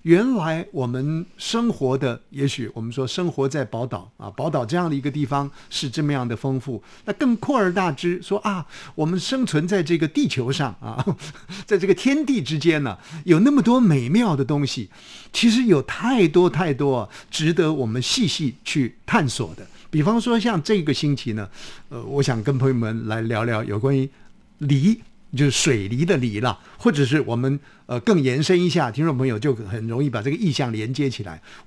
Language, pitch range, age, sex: Chinese, 130-200 Hz, 50-69, male